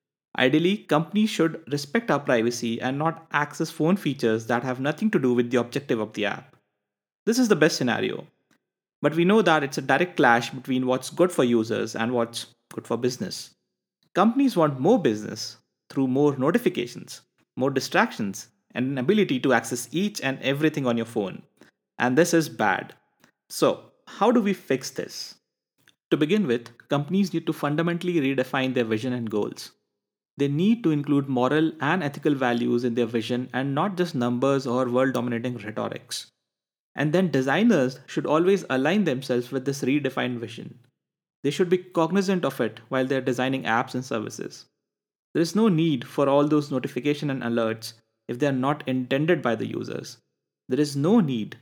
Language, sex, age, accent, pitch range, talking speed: English, male, 30-49, Indian, 125-165 Hz, 175 wpm